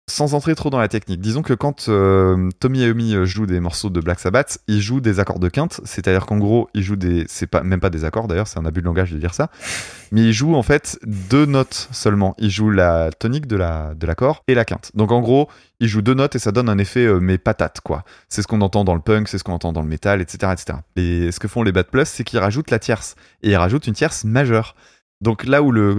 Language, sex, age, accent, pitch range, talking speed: French, male, 20-39, French, 95-115 Hz, 275 wpm